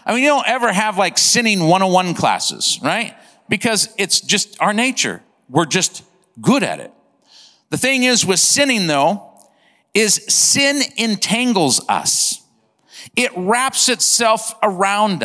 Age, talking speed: 50-69, 140 wpm